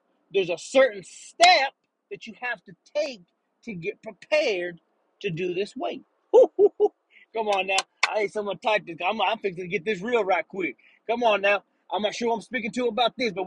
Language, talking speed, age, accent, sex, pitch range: English, 200 wpm, 30-49, American, male, 220-315 Hz